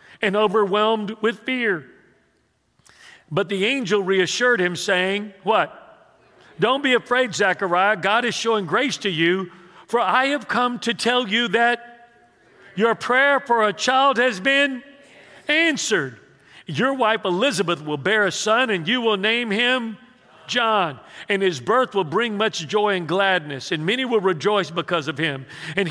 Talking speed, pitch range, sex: 155 wpm, 185-245 Hz, male